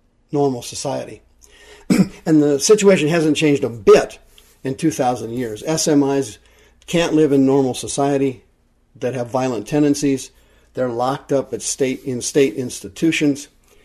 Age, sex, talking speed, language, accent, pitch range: 50-69, male, 130 wpm, English, American, 125-150 Hz